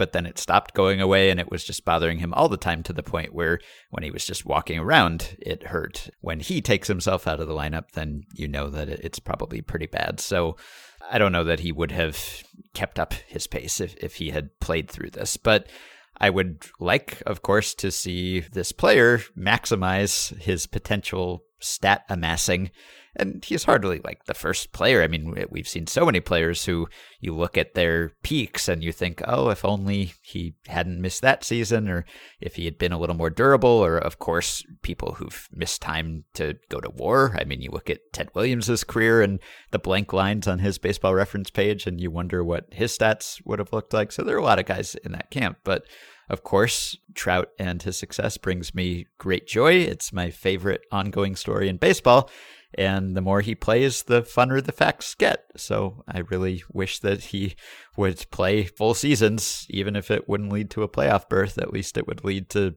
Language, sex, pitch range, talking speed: English, male, 85-100 Hz, 210 wpm